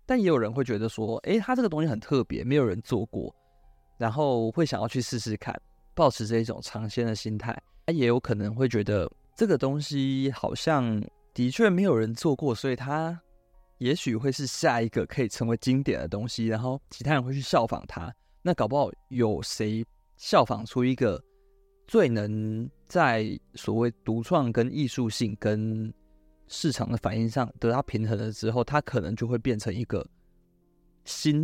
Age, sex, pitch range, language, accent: 20-39, male, 110-135 Hz, Chinese, native